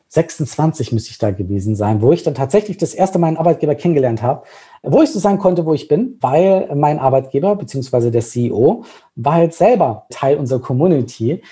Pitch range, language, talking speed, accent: 120-155 Hz, English, 190 wpm, German